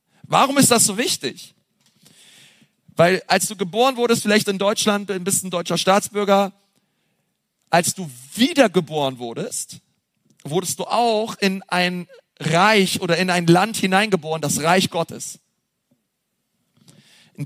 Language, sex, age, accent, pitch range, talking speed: German, male, 40-59, German, 175-210 Hz, 125 wpm